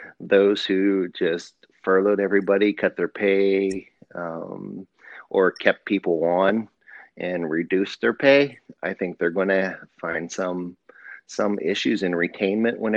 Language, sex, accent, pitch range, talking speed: English, male, American, 85-100 Hz, 135 wpm